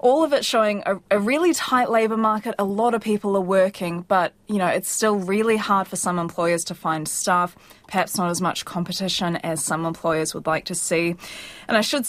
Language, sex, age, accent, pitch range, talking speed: English, female, 20-39, Australian, 170-195 Hz, 220 wpm